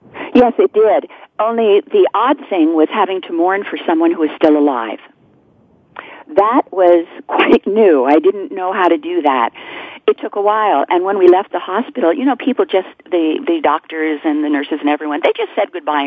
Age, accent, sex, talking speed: 50-69, American, female, 200 wpm